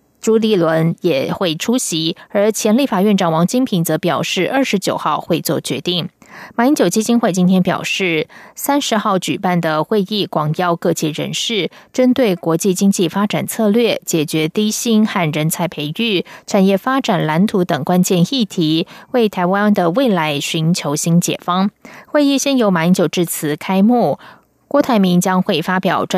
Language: German